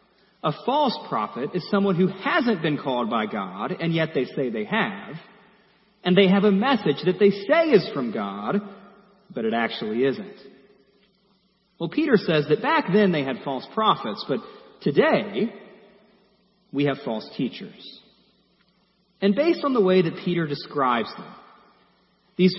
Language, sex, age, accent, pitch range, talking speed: English, male, 40-59, American, 155-210 Hz, 155 wpm